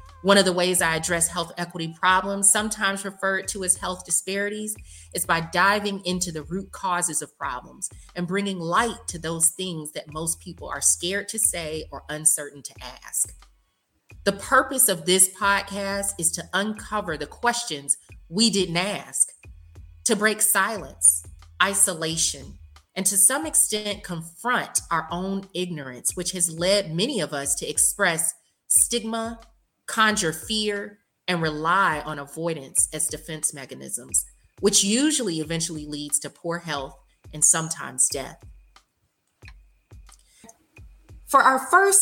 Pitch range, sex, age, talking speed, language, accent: 150-200 Hz, female, 30-49, 140 wpm, English, American